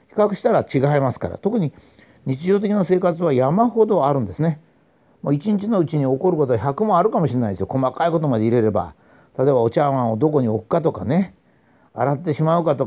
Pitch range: 130-205 Hz